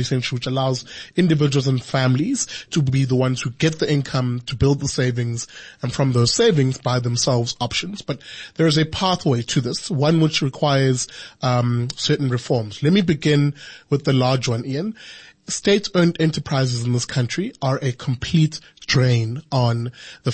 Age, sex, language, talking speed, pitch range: 20-39, male, English, 165 wpm, 130-165 Hz